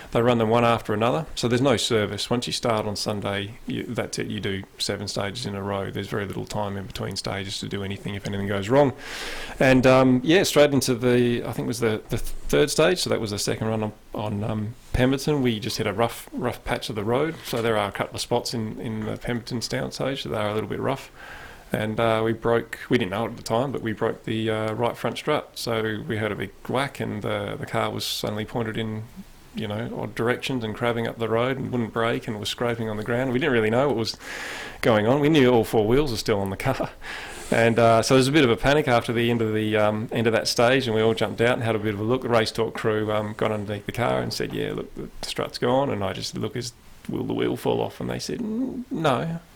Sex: male